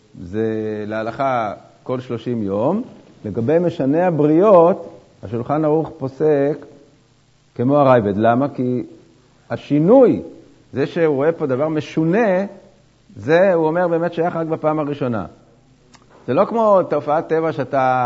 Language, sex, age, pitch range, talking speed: Hebrew, male, 50-69, 125-165 Hz, 120 wpm